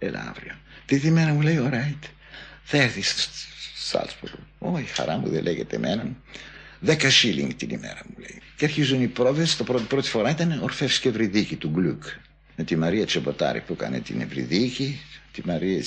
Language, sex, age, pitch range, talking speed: Greek, male, 60-79, 95-150 Hz, 180 wpm